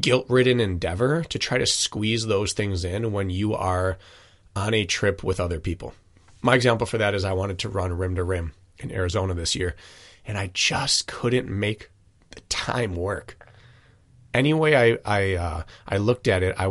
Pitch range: 95-115 Hz